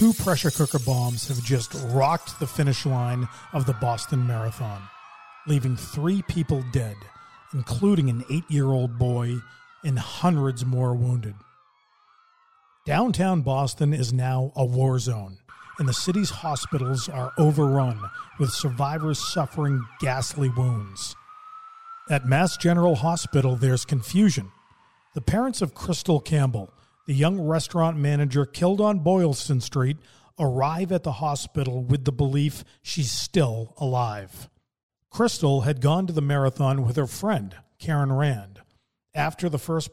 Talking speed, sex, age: 130 wpm, male, 40-59